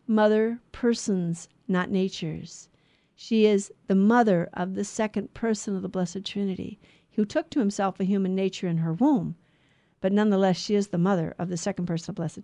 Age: 50-69